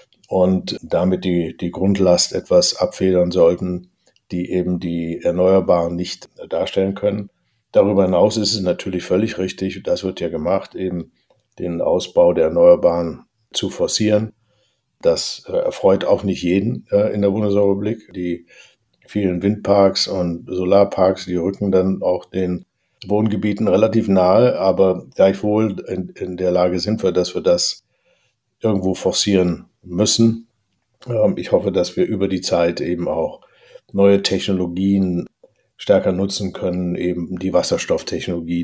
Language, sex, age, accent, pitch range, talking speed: German, male, 60-79, German, 90-105 Hz, 130 wpm